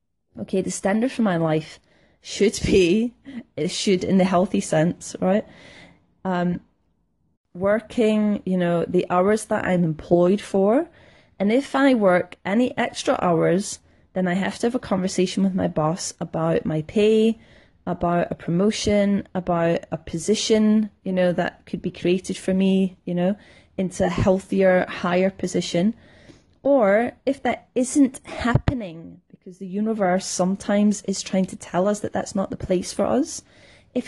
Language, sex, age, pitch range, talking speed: English, female, 20-39, 180-215 Hz, 155 wpm